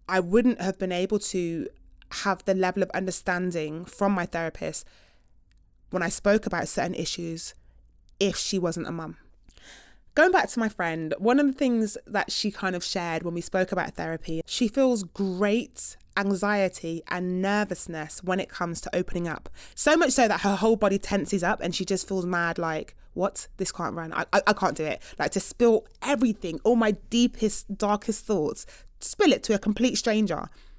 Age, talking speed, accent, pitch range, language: 20-39, 185 wpm, British, 175-225 Hz, English